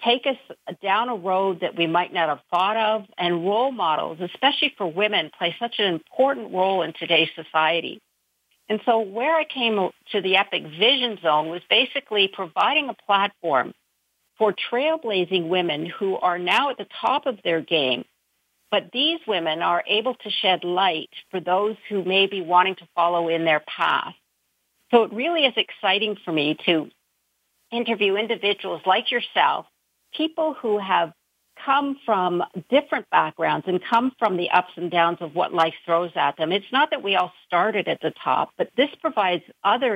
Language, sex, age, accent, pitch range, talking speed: English, female, 50-69, American, 175-235 Hz, 175 wpm